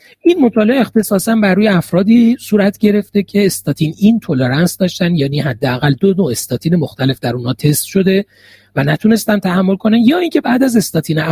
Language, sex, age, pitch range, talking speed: Persian, male, 40-59, 150-220 Hz, 170 wpm